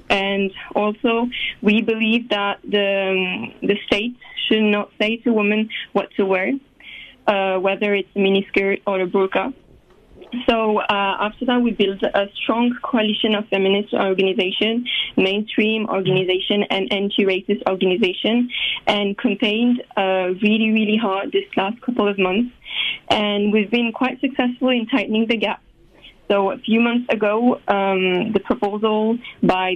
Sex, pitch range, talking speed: female, 195-230 Hz, 145 wpm